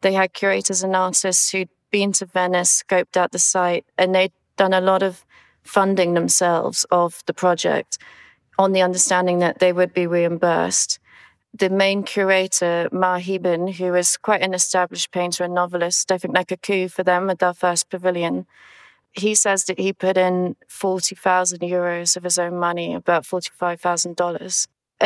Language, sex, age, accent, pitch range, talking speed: English, female, 30-49, British, 180-195 Hz, 165 wpm